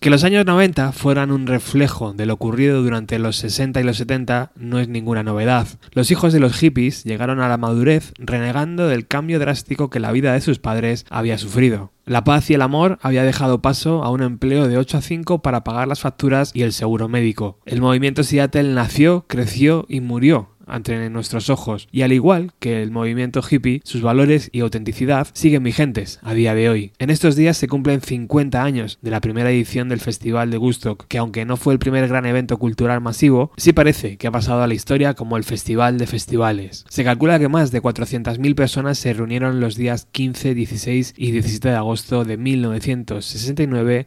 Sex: male